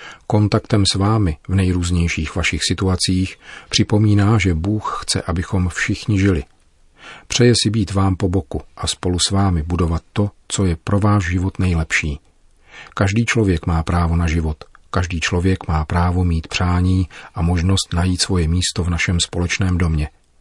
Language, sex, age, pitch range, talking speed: Czech, male, 40-59, 85-95 Hz, 155 wpm